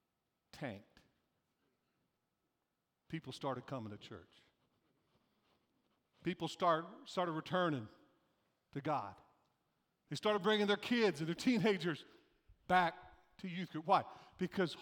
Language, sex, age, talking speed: English, male, 50-69, 105 wpm